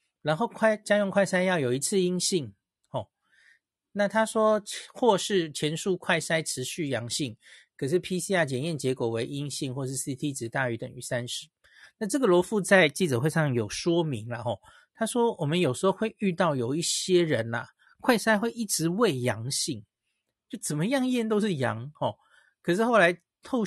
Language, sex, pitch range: Chinese, male, 125-185 Hz